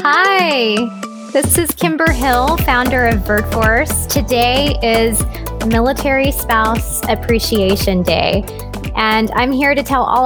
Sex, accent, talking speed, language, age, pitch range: female, American, 115 wpm, English, 20-39, 200-245 Hz